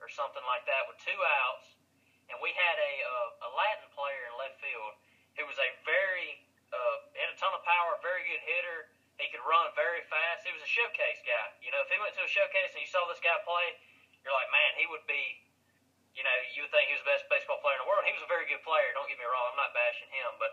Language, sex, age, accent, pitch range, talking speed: English, male, 20-39, American, 195-300 Hz, 270 wpm